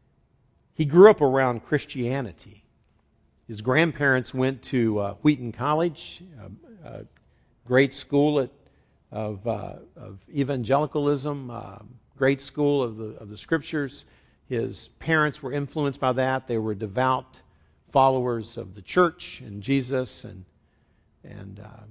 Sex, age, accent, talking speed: male, 60-79, American, 125 wpm